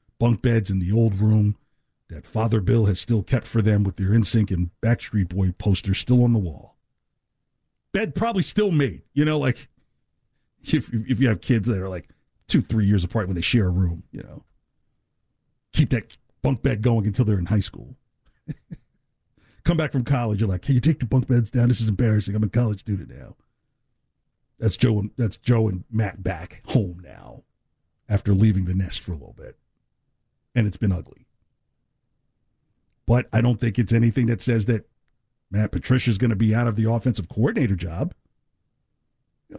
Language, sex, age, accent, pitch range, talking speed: English, male, 50-69, American, 105-135 Hz, 190 wpm